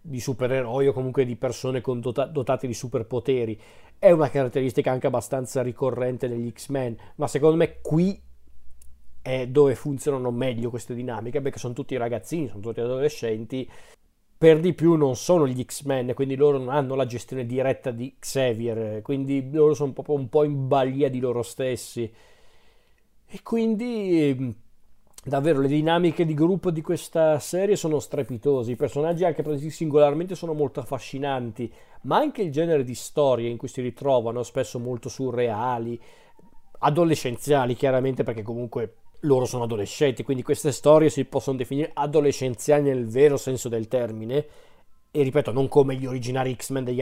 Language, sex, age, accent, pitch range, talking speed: Italian, male, 40-59, native, 125-145 Hz, 155 wpm